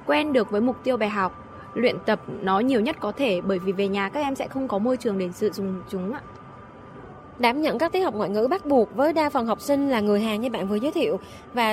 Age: 20-39